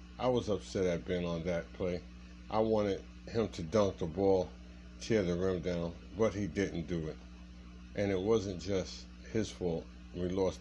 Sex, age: male, 50-69